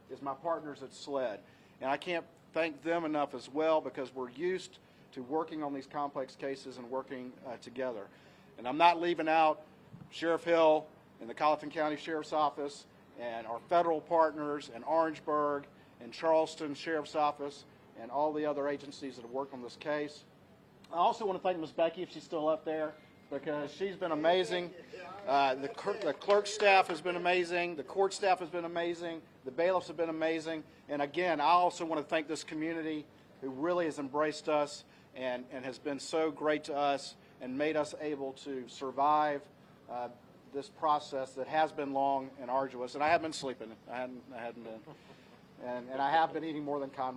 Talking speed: 190 wpm